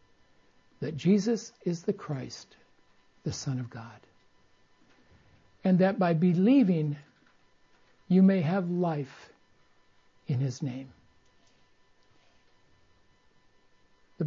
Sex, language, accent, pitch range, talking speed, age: male, English, American, 125-180 Hz, 90 wpm, 60-79